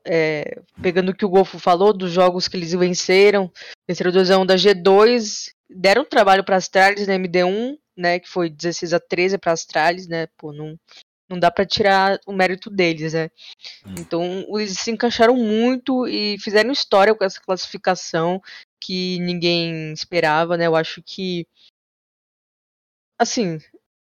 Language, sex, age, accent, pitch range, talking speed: Portuguese, female, 10-29, Brazilian, 175-210 Hz, 150 wpm